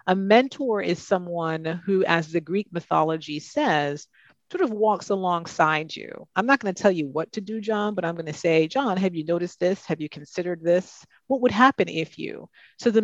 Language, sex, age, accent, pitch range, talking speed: English, female, 40-59, American, 155-195 Hz, 200 wpm